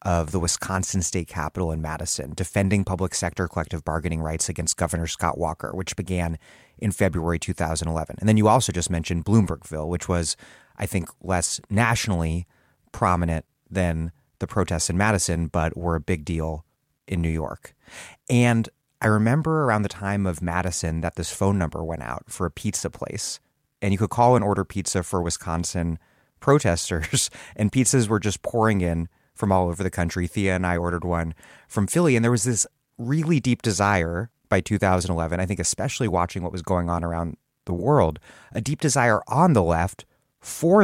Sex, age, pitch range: male, 30-49, 85-110 Hz